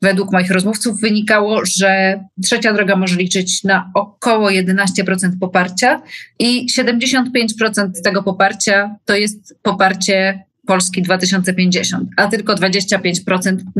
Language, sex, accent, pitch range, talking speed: Polish, female, native, 190-220 Hz, 110 wpm